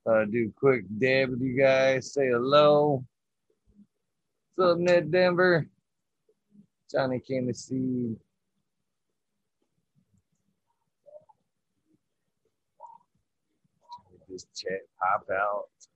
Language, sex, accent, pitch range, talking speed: English, male, American, 130-215 Hz, 85 wpm